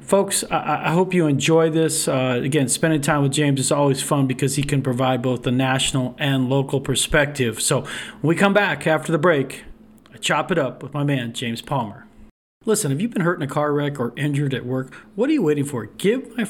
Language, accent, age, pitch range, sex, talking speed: English, American, 40-59, 135-175 Hz, male, 230 wpm